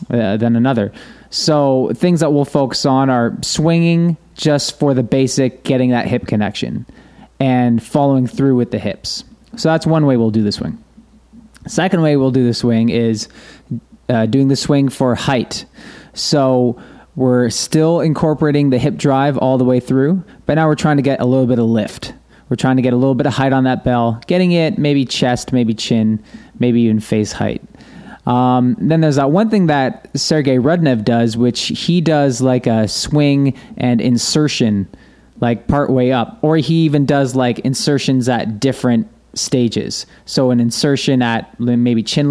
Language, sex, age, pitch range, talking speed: English, male, 20-39, 120-150 Hz, 180 wpm